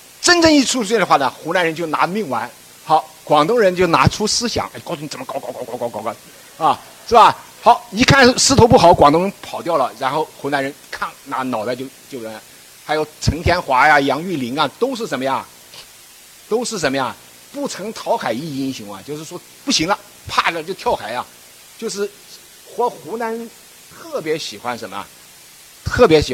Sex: male